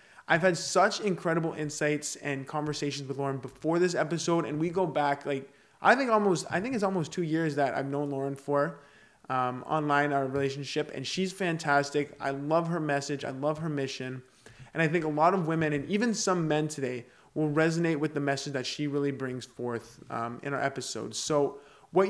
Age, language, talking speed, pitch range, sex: 20-39, English, 200 wpm, 140-170 Hz, male